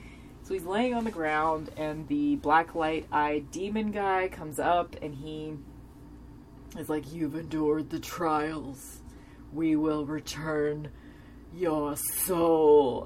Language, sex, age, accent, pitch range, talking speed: English, female, 30-49, American, 155-235 Hz, 125 wpm